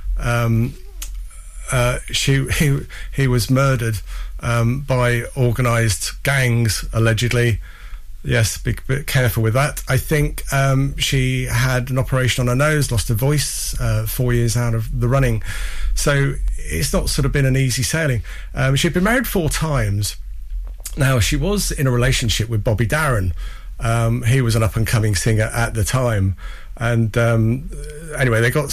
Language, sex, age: English, male, 40-59